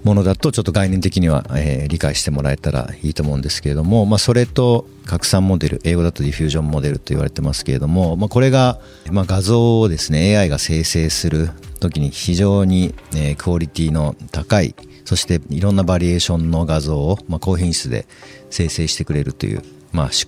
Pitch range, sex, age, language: 75-105 Hz, male, 50-69, Japanese